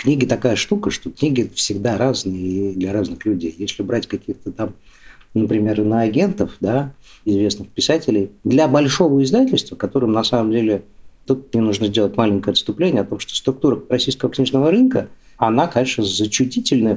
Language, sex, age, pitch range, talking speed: Russian, male, 50-69, 100-135 Hz, 150 wpm